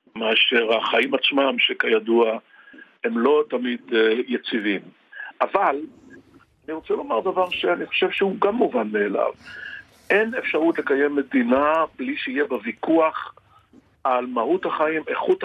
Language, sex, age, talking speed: Hebrew, male, 60-79, 120 wpm